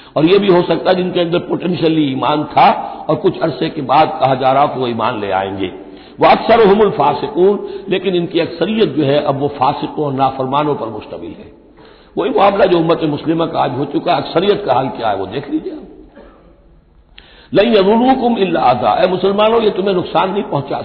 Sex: male